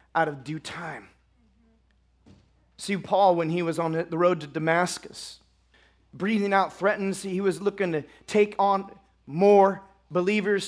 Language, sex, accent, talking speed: English, male, American, 140 wpm